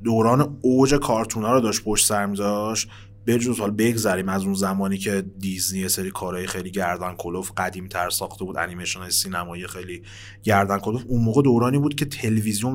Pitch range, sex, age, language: 95-120 Hz, male, 30-49, Persian